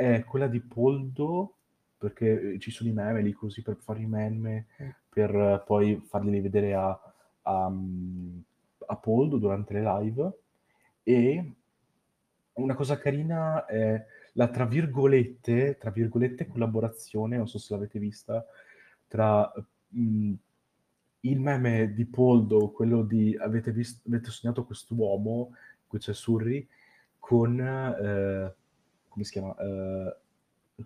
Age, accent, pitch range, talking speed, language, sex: 30-49, native, 105-125 Hz, 125 wpm, Italian, male